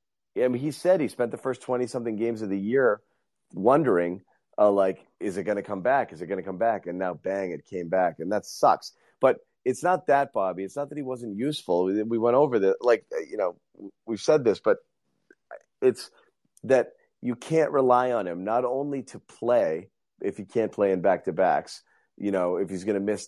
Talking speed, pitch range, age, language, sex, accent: 215 wpm, 100-130 Hz, 30-49, English, male, American